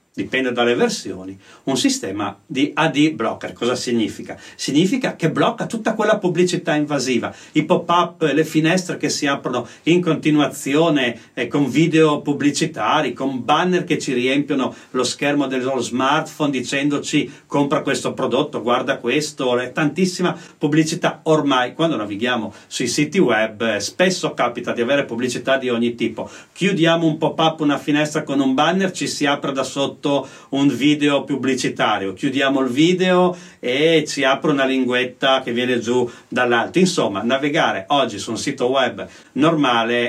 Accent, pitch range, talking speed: native, 125-160 Hz, 145 wpm